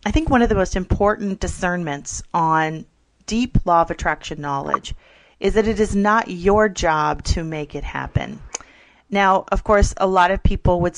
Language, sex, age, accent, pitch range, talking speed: English, female, 30-49, American, 160-210 Hz, 180 wpm